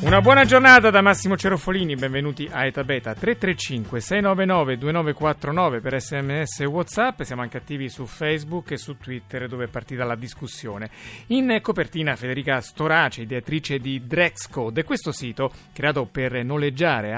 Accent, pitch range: native, 120-155 Hz